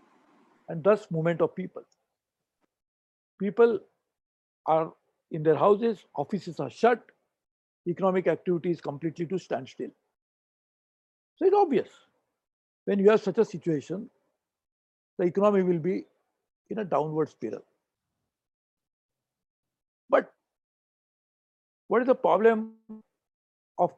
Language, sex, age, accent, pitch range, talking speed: English, male, 60-79, Indian, 160-220 Hz, 105 wpm